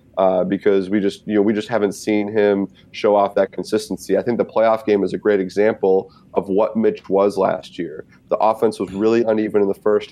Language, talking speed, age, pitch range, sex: English, 225 wpm, 30-49, 95-115 Hz, male